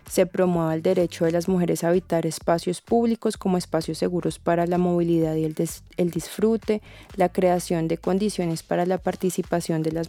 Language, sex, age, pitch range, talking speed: Spanish, female, 20-39, 170-195 Hz, 185 wpm